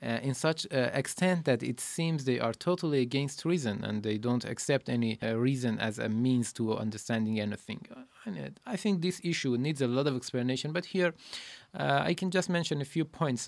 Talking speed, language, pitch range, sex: 200 wpm, Persian, 120-165 Hz, male